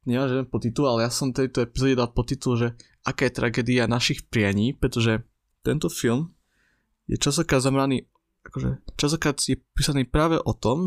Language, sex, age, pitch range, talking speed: Slovak, male, 20-39, 115-130 Hz, 160 wpm